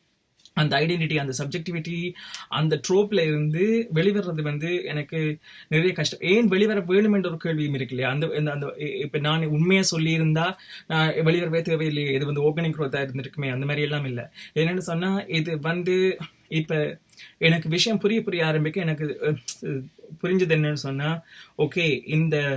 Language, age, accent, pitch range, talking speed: Tamil, 20-39, native, 140-170 Hz, 145 wpm